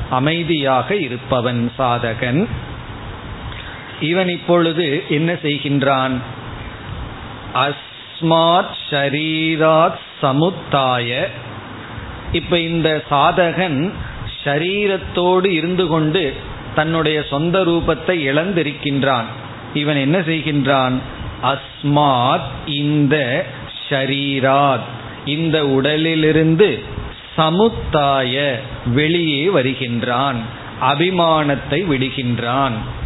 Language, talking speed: Tamil, 50 wpm